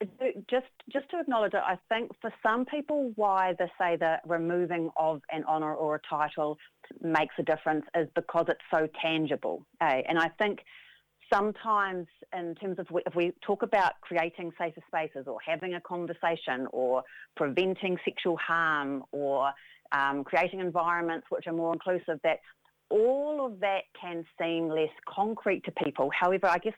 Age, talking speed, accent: 40-59, 165 wpm, Australian